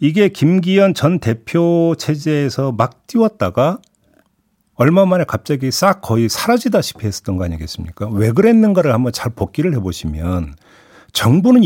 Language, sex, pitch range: Korean, male, 105-175 Hz